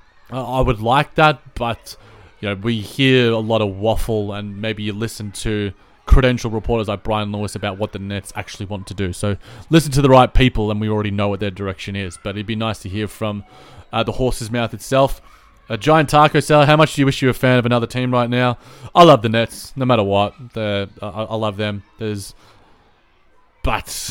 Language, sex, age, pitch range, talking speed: English, male, 30-49, 105-135 Hz, 220 wpm